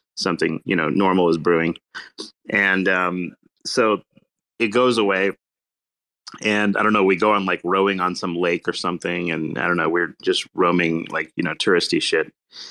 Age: 30-49